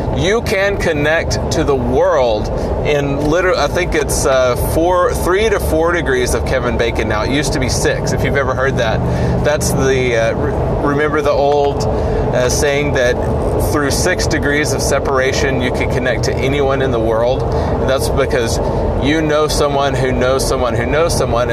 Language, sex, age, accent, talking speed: English, male, 30-49, American, 180 wpm